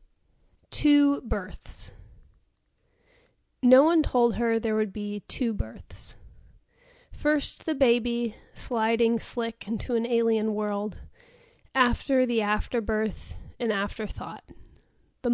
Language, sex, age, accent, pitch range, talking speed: English, female, 30-49, American, 210-255 Hz, 100 wpm